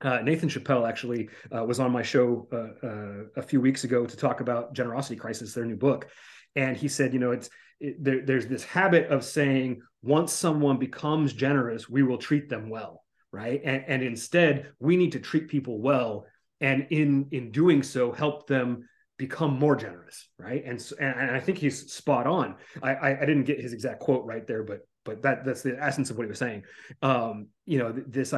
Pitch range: 120-145 Hz